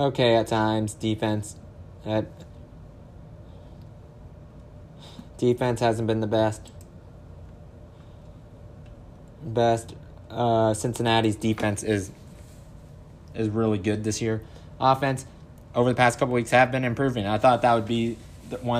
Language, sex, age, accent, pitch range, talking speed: English, male, 20-39, American, 105-125 Hz, 110 wpm